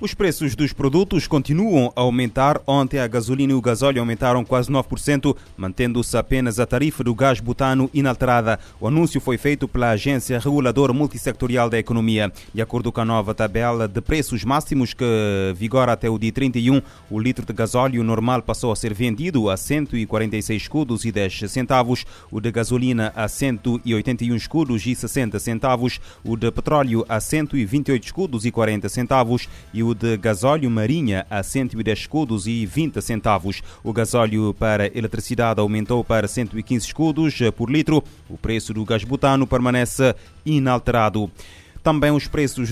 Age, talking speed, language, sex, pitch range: 30-49, 160 wpm, Portuguese, male, 110-130 Hz